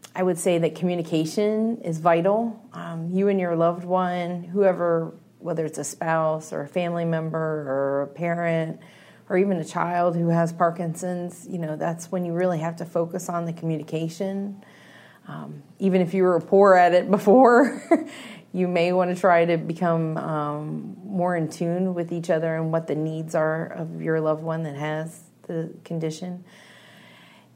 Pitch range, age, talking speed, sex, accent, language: 160-185 Hz, 30-49, 175 wpm, female, American, English